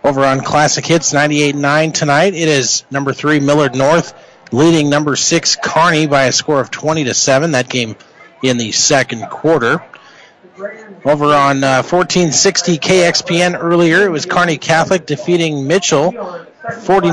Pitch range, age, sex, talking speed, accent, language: 135-175 Hz, 40-59, male, 160 wpm, American, English